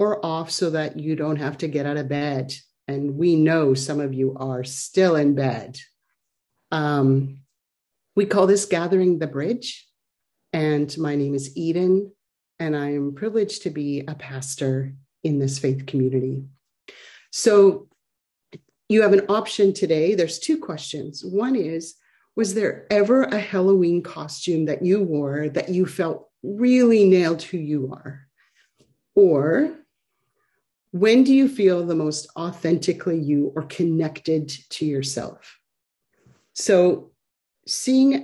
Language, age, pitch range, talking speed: English, 40-59, 150-200 Hz, 140 wpm